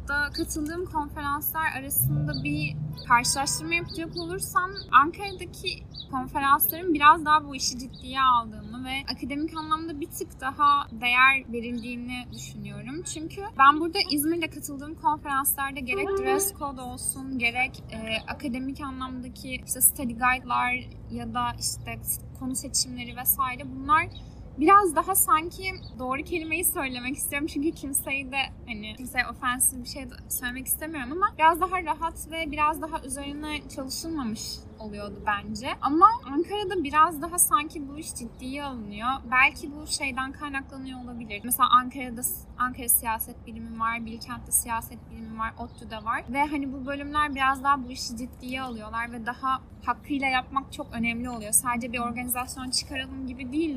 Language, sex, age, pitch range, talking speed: English, female, 10-29, 240-305 Hz, 140 wpm